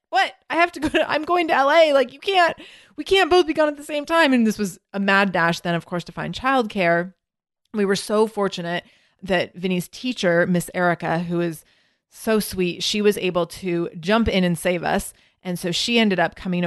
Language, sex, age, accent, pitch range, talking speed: English, female, 30-49, American, 175-230 Hz, 225 wpm